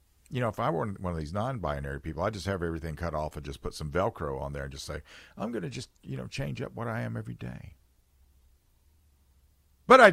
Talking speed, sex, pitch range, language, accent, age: 245 wpm, male, 85-145 Hz, English, American, 50-69